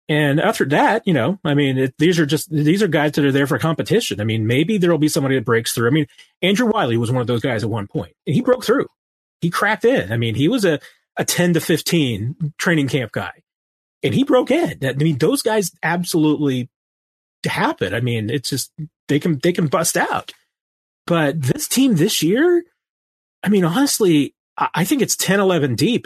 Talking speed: 215 wpm